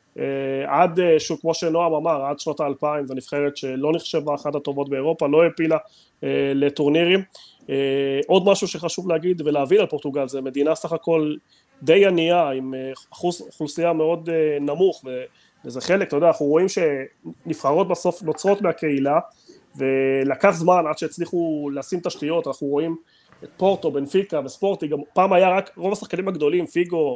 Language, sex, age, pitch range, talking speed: Hebrew, male, 30-49, 145-180 Hz, 155 wpm